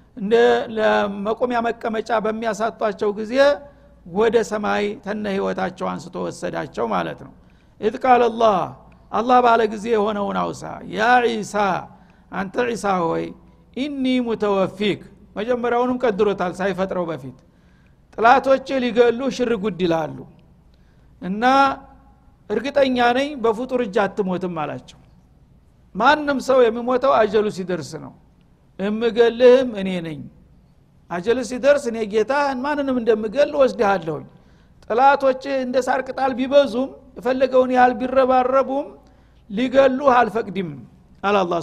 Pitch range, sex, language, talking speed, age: 195-250 Hz, male, Amharic, 80 wpm, 60-79